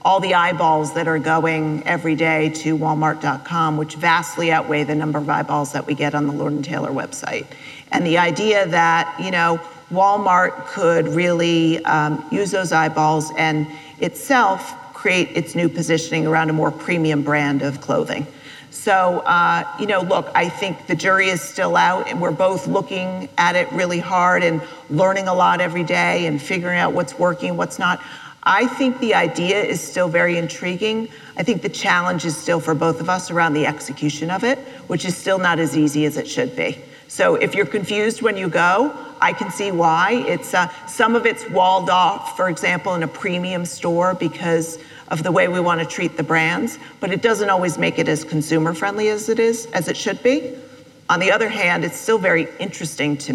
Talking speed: 200 wpm